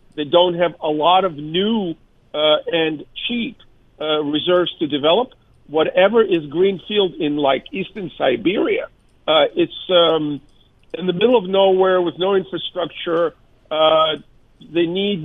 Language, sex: English, male